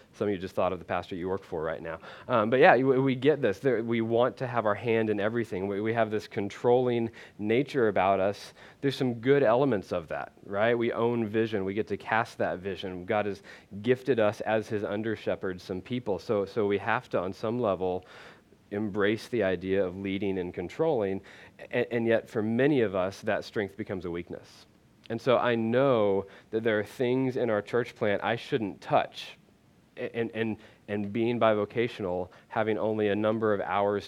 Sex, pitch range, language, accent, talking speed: male, 100-115 Hz, English, American, 200 wpm